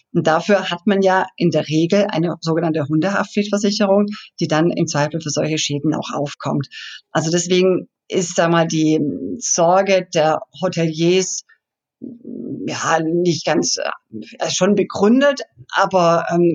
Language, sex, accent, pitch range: German, female, German, 170-205 Hz